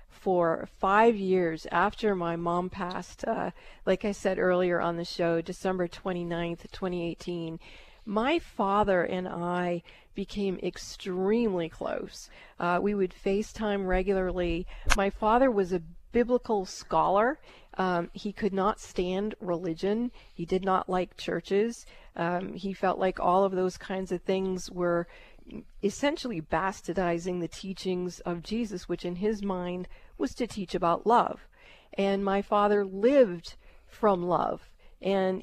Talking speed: 135 wpm